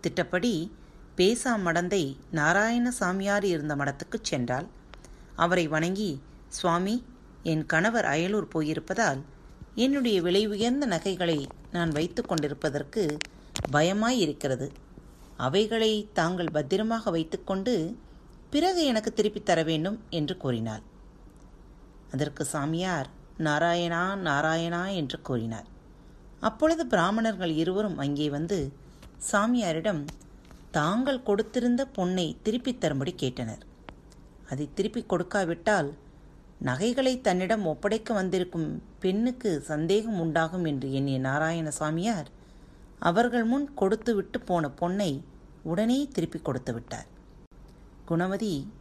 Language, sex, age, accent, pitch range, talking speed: Tamil, female, 30-49, native, 155-210 Hz, 90 wpm